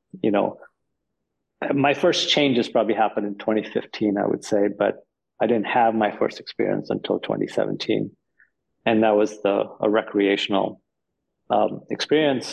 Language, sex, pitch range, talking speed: English, male, 100-115 Hz, 140 wpm